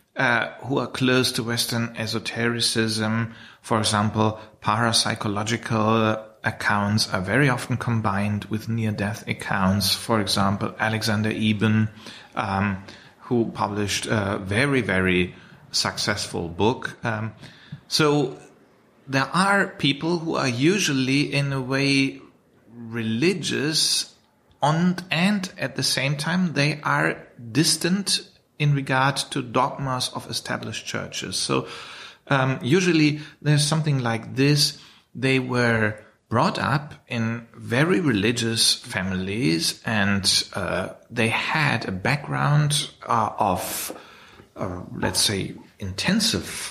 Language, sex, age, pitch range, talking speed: English, male, 30-49, 110-140 Hz, 110 wpm